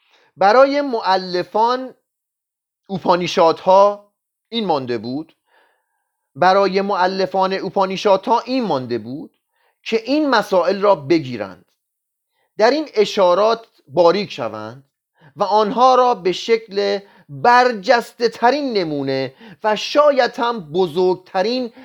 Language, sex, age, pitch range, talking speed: Persian, male, 30-49, 150-235 Hz, 95 wpm